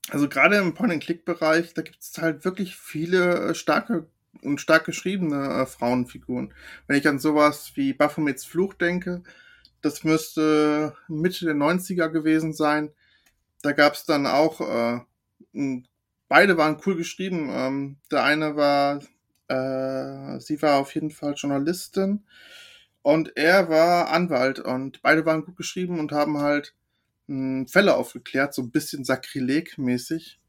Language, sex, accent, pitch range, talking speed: German, male, German, 145-175 Hz, 135 wpm